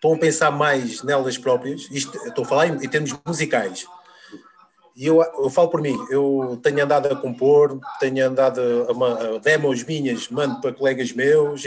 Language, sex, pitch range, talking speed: Portuguese, male, 135-185 Hz, 180 wpm